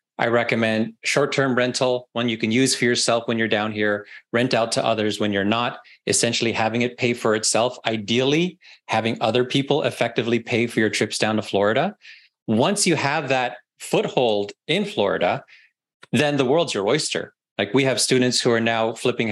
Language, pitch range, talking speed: English, 110-130 Hz, 185 wpm